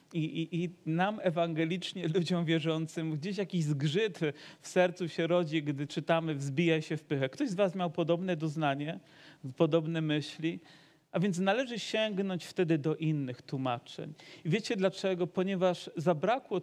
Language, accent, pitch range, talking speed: Polish, native, 155-185 Hz, 150 wpm